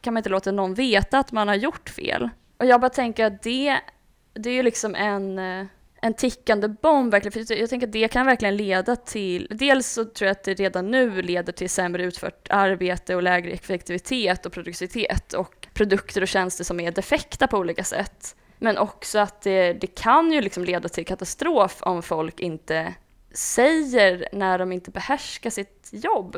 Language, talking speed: Swedish, 190 wpm